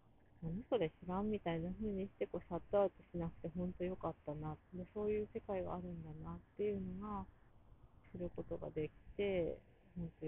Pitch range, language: 155-200 Hz, Japanese